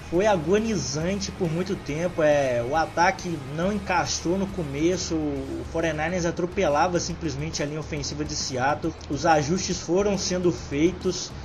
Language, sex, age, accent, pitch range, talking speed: Portuguese, male, 20-39, Brazilian, 145-175 Hz, 135 wpm